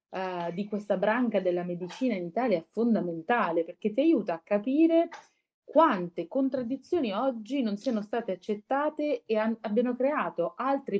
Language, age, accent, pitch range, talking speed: Italian, 30-49, native, 175-235 Hz, 145 wpm